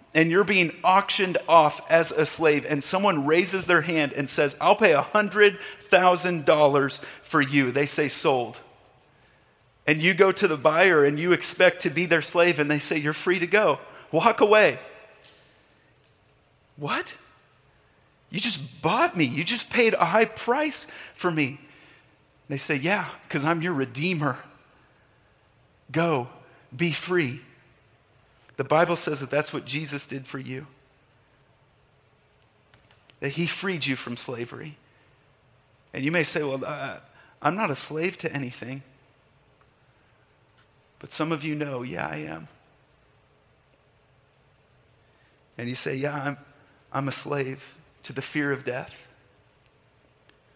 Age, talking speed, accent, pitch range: 40-59, 140 wpm, American, 135-170 Hz